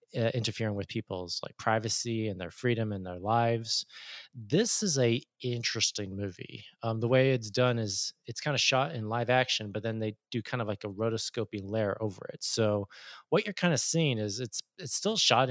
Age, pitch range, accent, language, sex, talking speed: 20-39, 110-130 Hz, American, English, male, 200 wpm